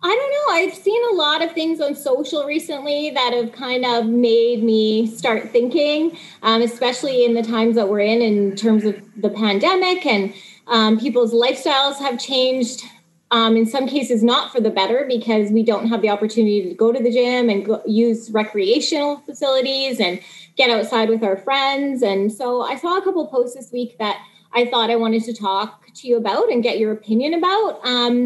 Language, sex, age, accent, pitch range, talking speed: English, female, 20-39, American, 215-265 Hz, 200 wpm